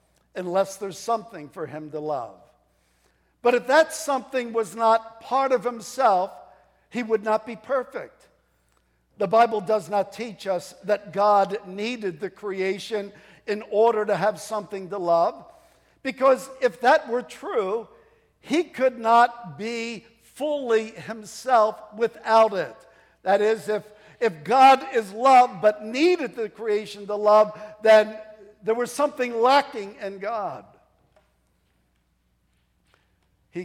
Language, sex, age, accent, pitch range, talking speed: English, male, 60-79, American, 175-230 Hz, 130 wpm